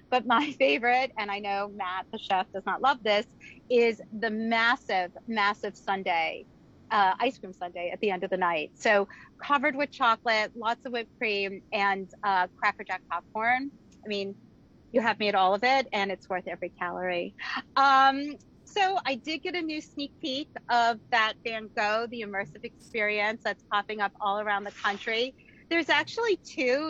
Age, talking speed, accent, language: 30-49, 180 wpm, American, English